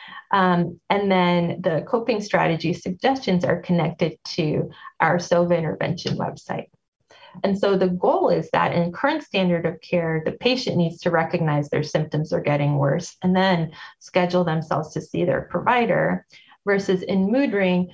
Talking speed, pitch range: 155 wpm, 165-195 Hz